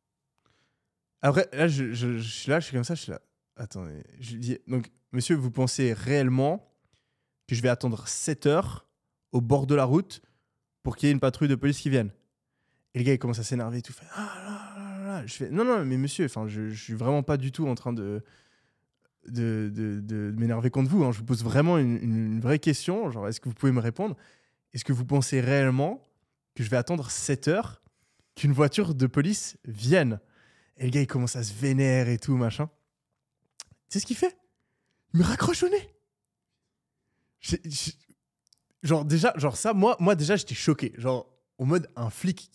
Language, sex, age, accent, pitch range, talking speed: French, male, 20-39, French, 120-155 Hz, 215 wpm